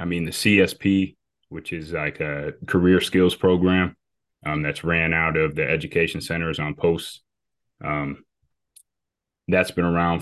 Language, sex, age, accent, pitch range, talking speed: English, male, 20-39, American, 80-90 Hz, 145 wpm